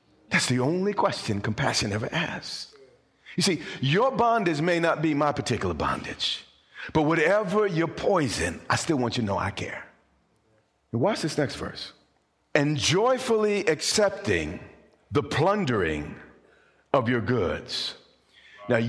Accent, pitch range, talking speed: American, 130-190 Hz, 135 wpm